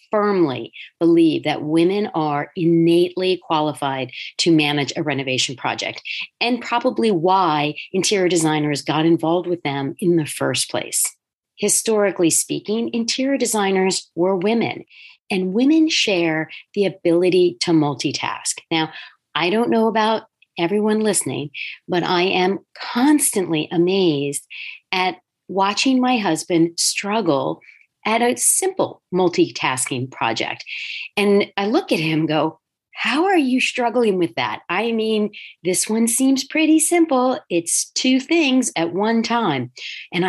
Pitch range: 160-235 Hz